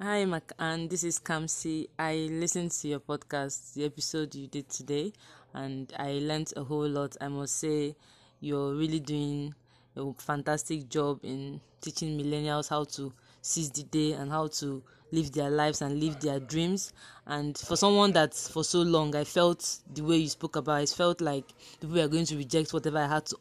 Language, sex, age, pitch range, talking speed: English, female, 20-39, 145-160 Hz, 190 wpm